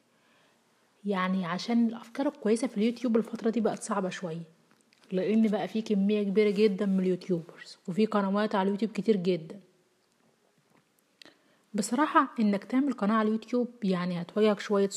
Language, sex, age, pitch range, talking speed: Arabic, female, 30-49, 185-225 Hz, 135 wpm